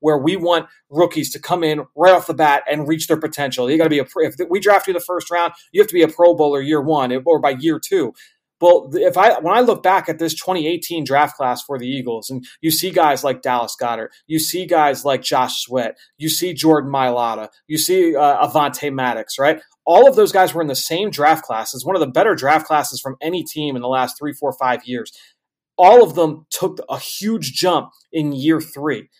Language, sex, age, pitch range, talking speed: English, male, 30-49, 145-175 Hz, 235 wpm